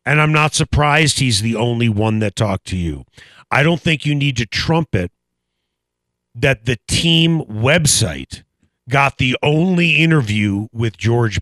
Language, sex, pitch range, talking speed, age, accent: English, male, 110-175 Hz, 150 wpm, 40-59, American